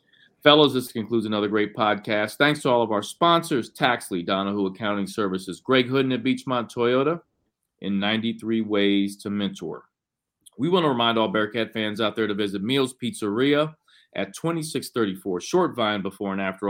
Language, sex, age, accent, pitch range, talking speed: English, male, 40-59, American, 100-130 Hz, 165 wpm